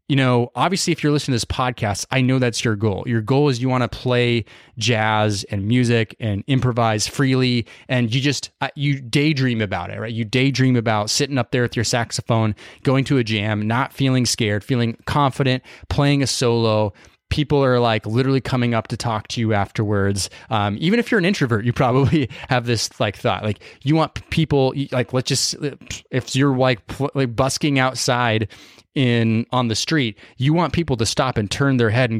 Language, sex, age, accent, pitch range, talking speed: English, male, 20-39, American, 110-140 Hz, 200 wpm